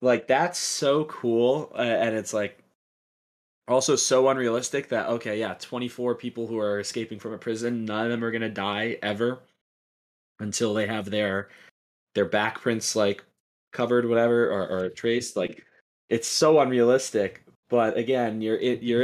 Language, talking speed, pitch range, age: English, 160 wpm, 95-120 Hz, 20-39